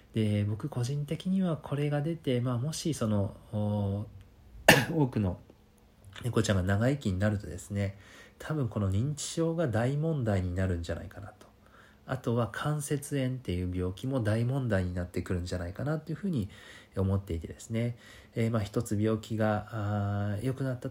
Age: 40-59